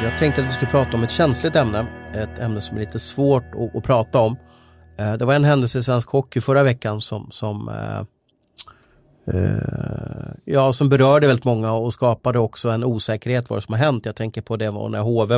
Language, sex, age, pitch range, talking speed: Swedish, male, 30-49, 110-130 Hz, 215 wpm